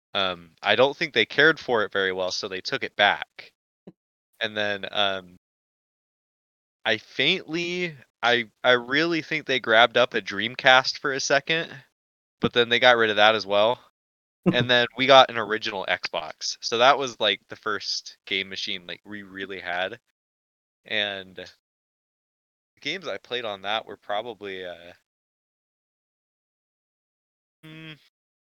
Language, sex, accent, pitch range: English, male, American, 95-120 Hz